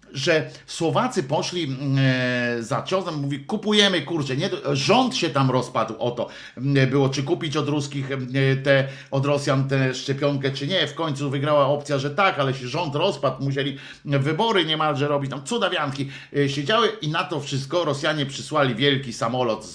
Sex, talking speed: male, 155 wpm